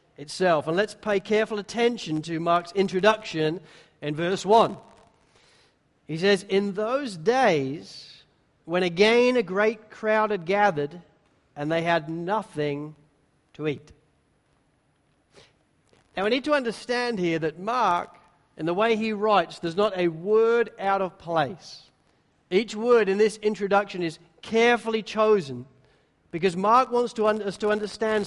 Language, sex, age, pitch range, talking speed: English, male, 40-59, 165-215 Hz, 135 wpm